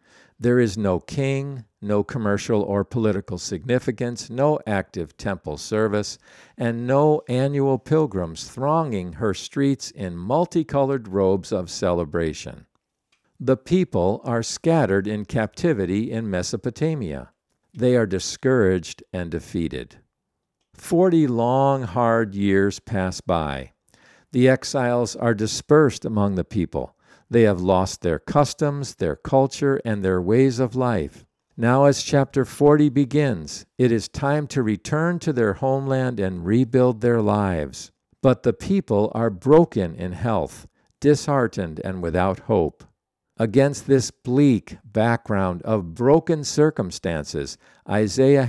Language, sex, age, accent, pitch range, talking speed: English, male, 50-69, American, 100-135 Hz, 125 wpm